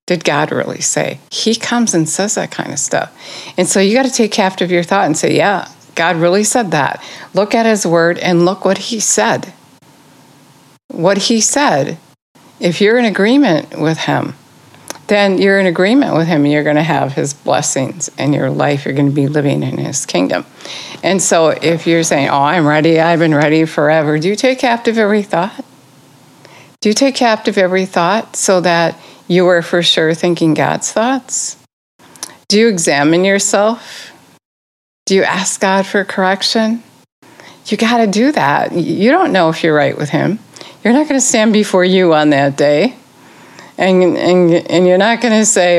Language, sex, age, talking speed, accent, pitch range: English, female, 60-79, 190 wpm, American, 160-215 Hz